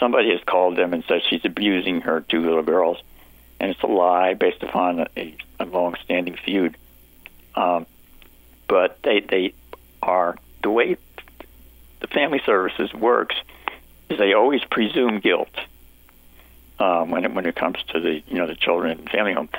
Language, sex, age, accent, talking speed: English, male, 60-79, American, 165 wpm